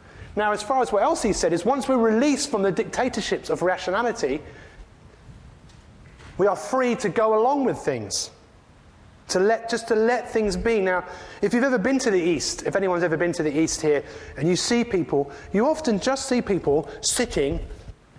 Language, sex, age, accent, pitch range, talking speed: English, male, 30-49, British, 170-235 Hz, 190 wpm